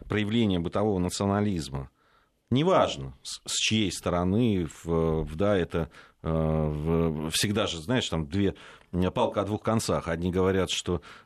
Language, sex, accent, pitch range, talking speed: Russian, male, native, 85-110 Hz, 135 wpm